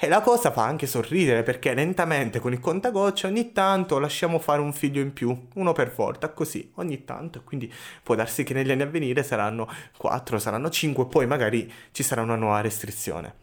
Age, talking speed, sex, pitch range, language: 20-39, 195 wpm, male, 115-175 Hz, Italian